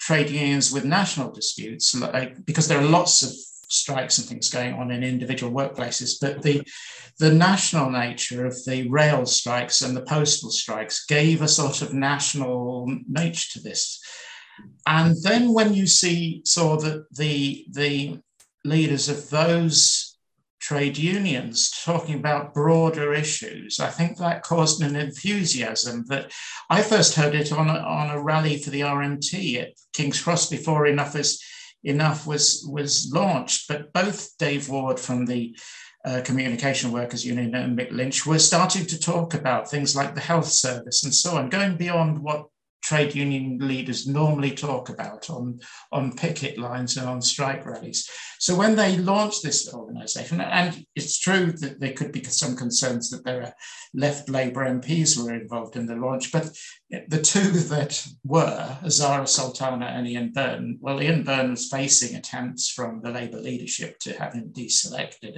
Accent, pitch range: British, 130-160 Hz